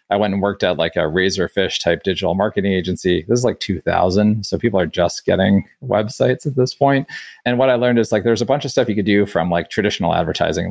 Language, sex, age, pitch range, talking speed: English, male, 30-49, 90-115 Hz, 240 wpm